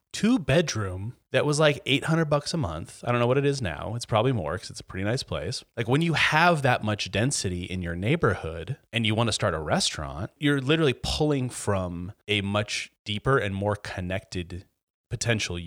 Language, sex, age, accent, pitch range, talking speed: English, male, 30-49, American, 95-125 Hz, 205 wpm